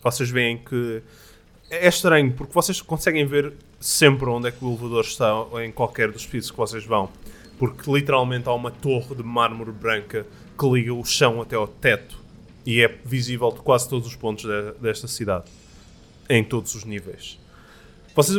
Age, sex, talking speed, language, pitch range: 20-39, male, 175 wpm, Portuguese, 115-145 Hz